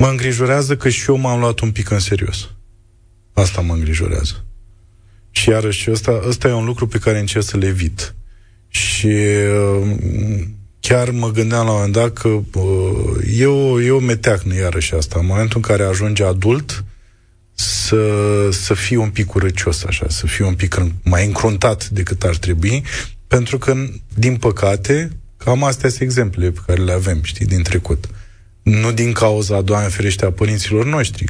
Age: 20-39